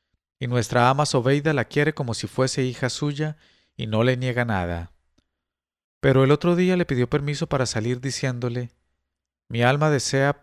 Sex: male